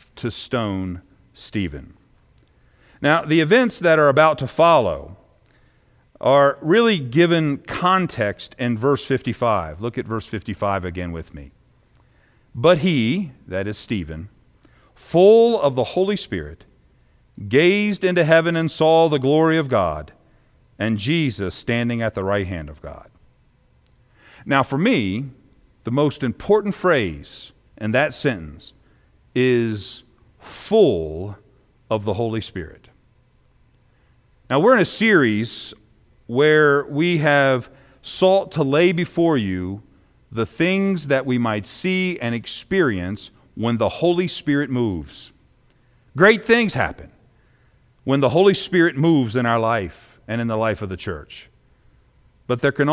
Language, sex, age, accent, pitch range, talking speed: English, male, 50-69, American, 105-155 Hz, 130 wpm